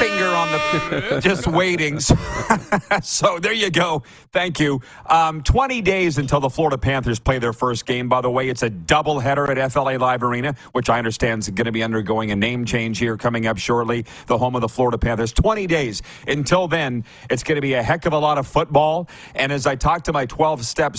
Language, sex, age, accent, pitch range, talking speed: English, male, 40-59, American, 115-150 Hz, 220 wpm